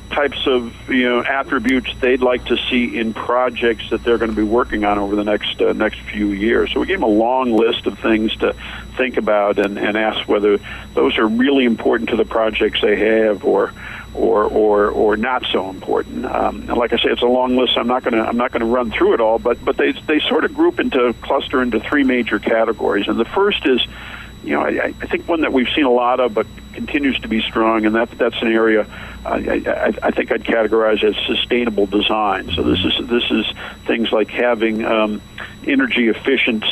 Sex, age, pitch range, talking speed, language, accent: male, 50-69, 105-120 Hz, 220 wpm, English, American